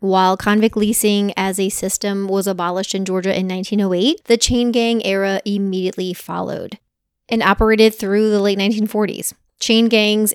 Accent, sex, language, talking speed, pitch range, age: American, female, English, 150 wpm, 185-220 Hz, 20-39